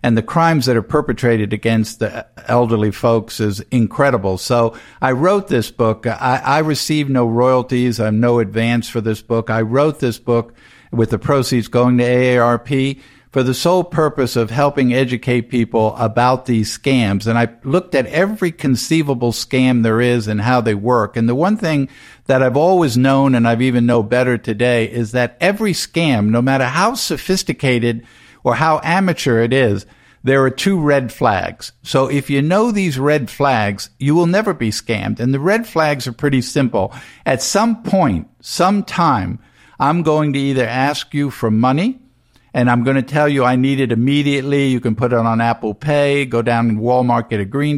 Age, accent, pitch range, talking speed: 50-69, American, 115-145 Hz, 185 wpm